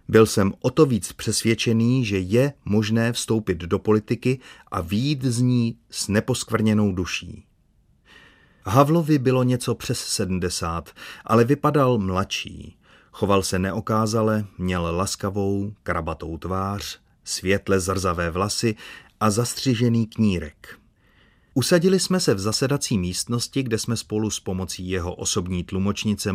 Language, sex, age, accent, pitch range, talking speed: Czech, male, 30-49, native, 95-120 Hz, 125 wpm